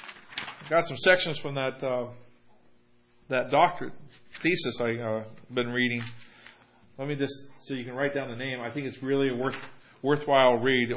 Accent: American